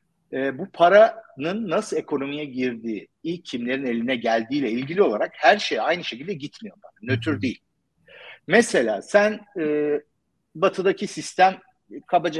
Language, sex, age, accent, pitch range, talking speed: Turkish, male, 50-69, native, 130-195 Hz, 120 wpm